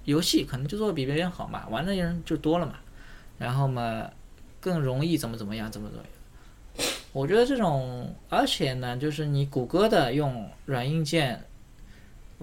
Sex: male